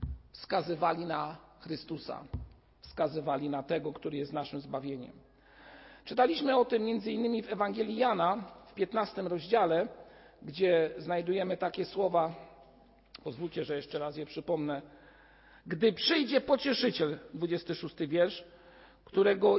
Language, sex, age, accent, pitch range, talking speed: Polish, male, 50-69, native, 170-240 Hz, 115 wpm